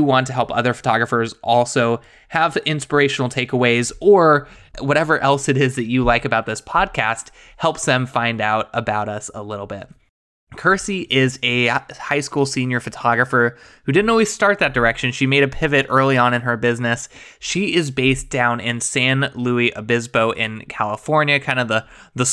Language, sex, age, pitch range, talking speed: English, male, 20-39, 120-140 Hz, 175 wpm